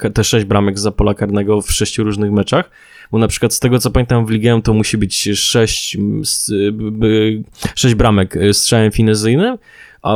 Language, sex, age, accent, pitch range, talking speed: Polish, male, 20-39, native, 105-115 Hz, 160 wpm